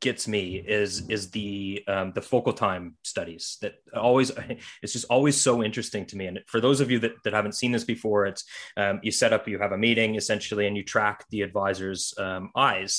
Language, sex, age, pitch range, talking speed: English, male, 20-39, 100-120 Hz, 215 wpm